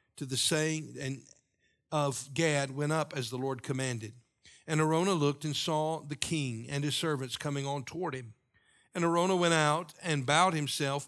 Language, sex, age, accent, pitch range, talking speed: English, male, 50-69, American, 130-165 Hz, 175 wpm